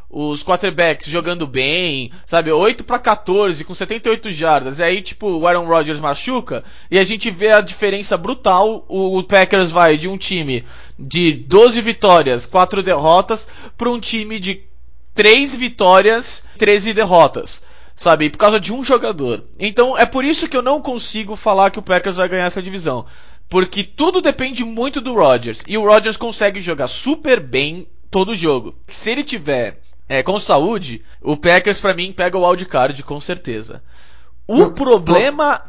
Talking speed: 165 wpm